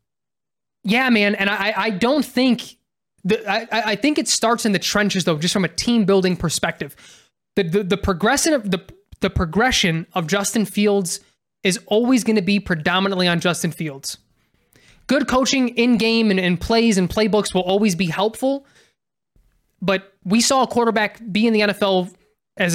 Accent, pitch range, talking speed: American, 180-220 Hz, 170 wpm